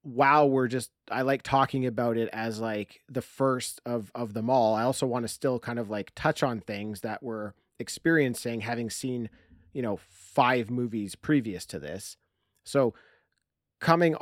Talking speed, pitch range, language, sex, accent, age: 175 wpm, 115-145 Hz, English, male, American, 30-49